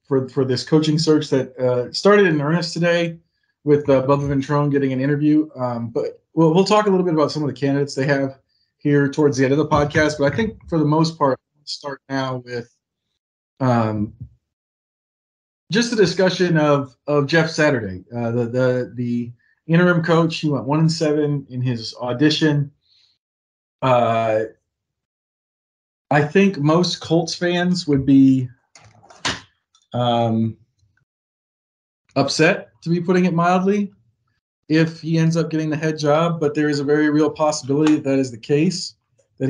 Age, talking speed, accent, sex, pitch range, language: 40-59, 165 wpm, American, male, 120-155 Hz, English